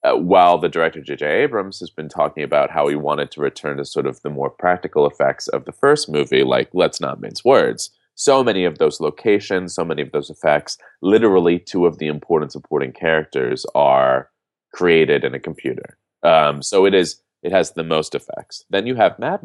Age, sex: 30-49, male